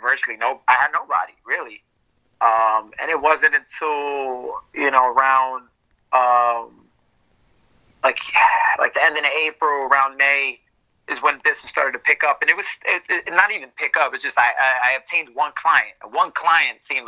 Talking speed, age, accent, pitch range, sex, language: 170 wpm, 30-49, American, 135-165 Hz, male, English